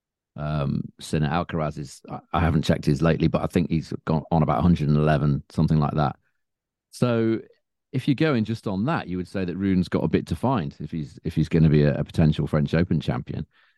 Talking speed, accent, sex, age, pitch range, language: 230 wpm, British, male, 40-59, 80-105 Hz, English